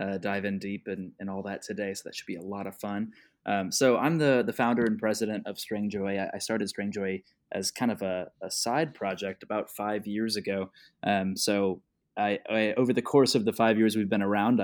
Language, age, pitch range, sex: English, 20-39, 100-110 Hz, male